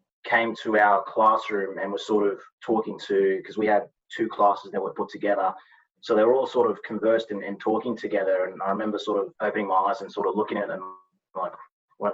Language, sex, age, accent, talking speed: English, male, 20-39, Australian, 220 wpm